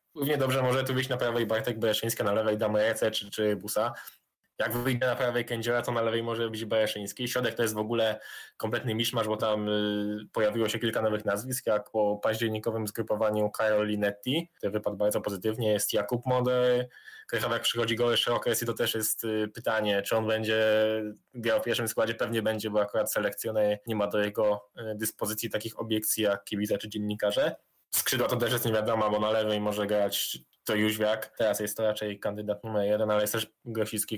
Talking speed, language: 195 wpm, Polish